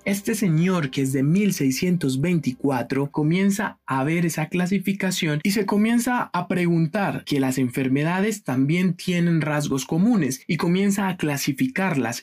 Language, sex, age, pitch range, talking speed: Spanish, male, 20-39, 135-185 Hz, 130 wpm